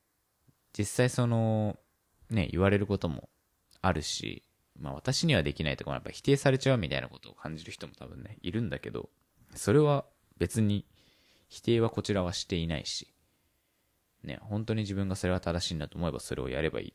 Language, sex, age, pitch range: Japanese, male, 20-39, 80-110 Hz